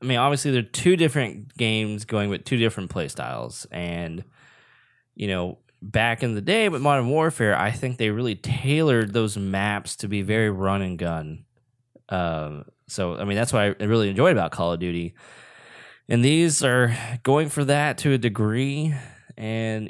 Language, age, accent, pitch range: English, 20-39, American, 95-125 Hz